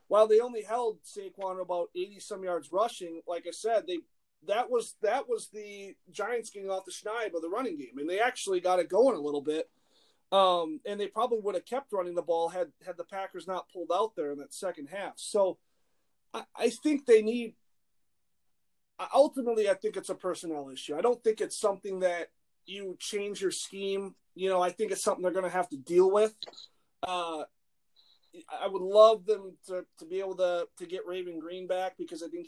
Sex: male